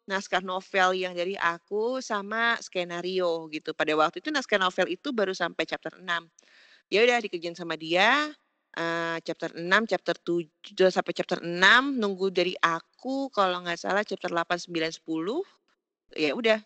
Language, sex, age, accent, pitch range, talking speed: Indonesian, female, 30-49, native, 170-200 Hz, 155 wpm